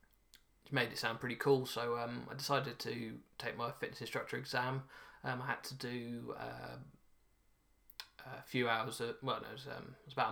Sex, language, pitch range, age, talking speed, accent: male, English, 115-130 Hz, 20-39, 185 wpm, British